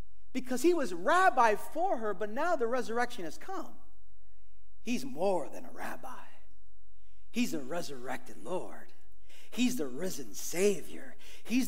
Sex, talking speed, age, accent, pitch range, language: male, 135 wpm, 40-59, American, 205-330 Hz, English